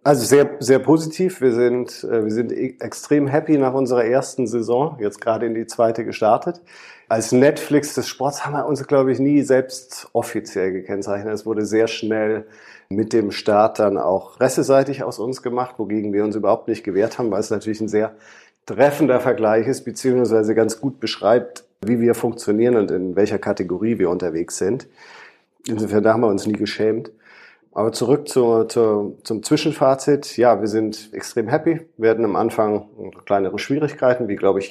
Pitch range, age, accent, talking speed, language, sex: 105-125 Hz, 40-59, German, 175 wpm, German, male